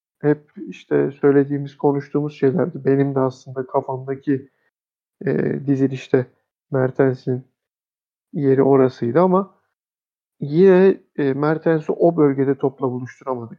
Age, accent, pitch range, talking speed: 50-69, native, 130-160 Hz, 95 wpm